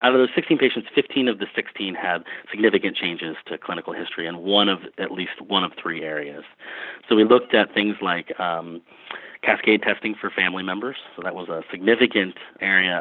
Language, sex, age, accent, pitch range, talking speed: English, male, 30-49, American, 85-105 Hz, 195 wpm